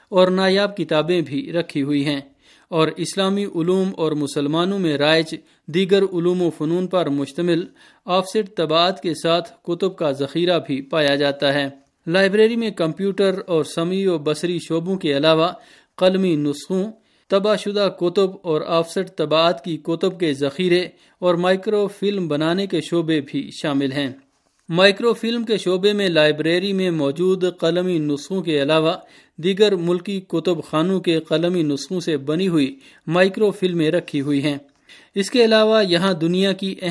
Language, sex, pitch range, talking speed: Urdu, male, 155-190 Hz, 155 wpm